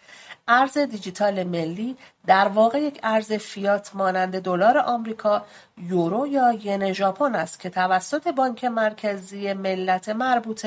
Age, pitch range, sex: 40-59, 200-265 Hz, female